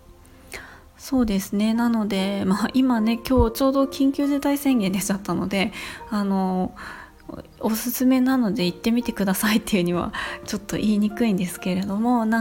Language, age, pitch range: Japanese, 20-39, 185-245 Hz